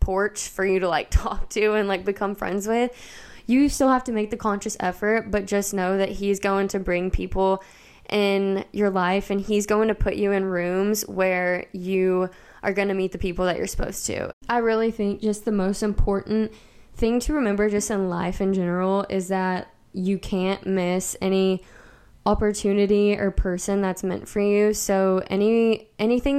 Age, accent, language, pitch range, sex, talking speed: 10-29, American, English, 190-210 Hz, female, 190 wpm